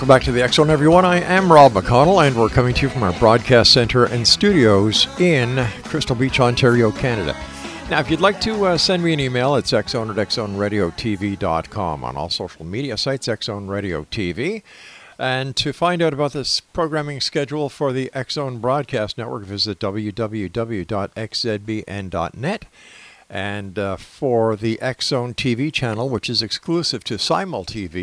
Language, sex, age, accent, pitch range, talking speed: English, male, 50-69, American, 105-145 Hz, 165 wpm